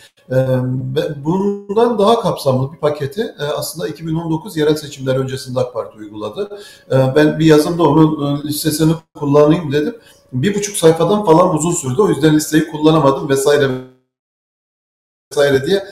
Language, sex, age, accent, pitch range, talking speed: Turkish, male, 50-69, native, 130-160 Hz, 125 wpm